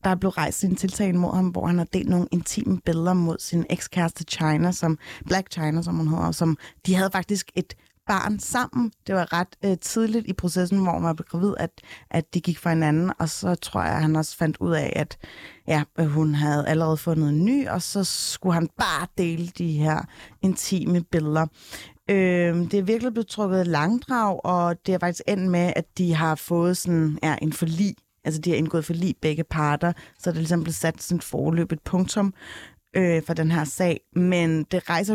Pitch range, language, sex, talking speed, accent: 160-185 Hz, Danish, female, 210 wpm, native